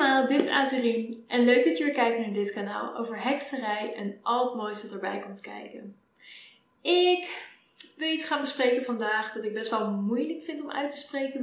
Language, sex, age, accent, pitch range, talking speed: Dutch, female, 10-29, Dutch, 205-250 Hz, 190 wpm